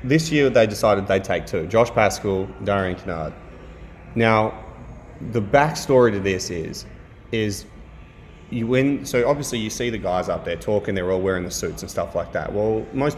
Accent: Australian